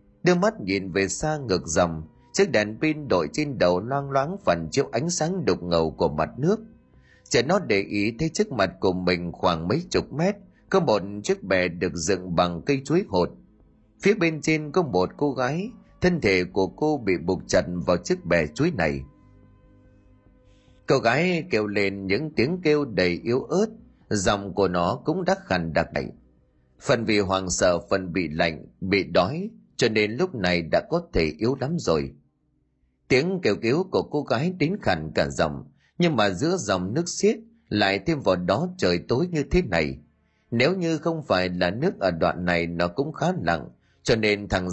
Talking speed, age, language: 195 wpm, 30-49, Vietnamese